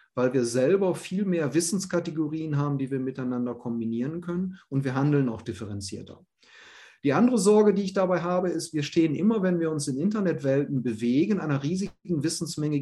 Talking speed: 175 wpm